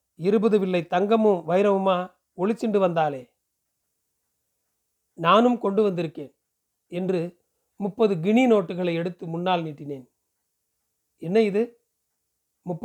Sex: male